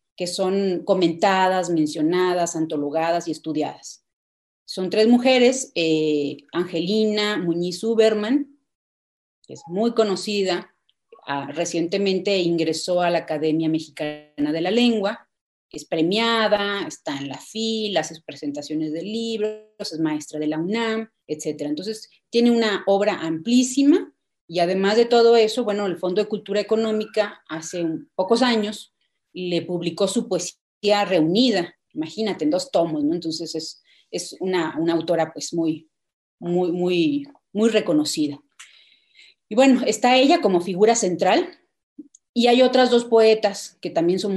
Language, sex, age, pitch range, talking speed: Spanish, female, 30-49, 160-220 Hz, 135 wpm